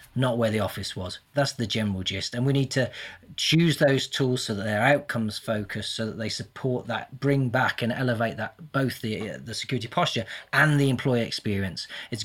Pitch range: 110-130 Hz